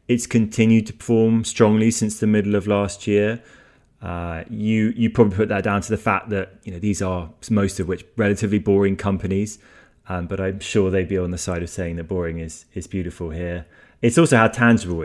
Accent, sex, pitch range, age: British, male, 90-105 Hz, 20-39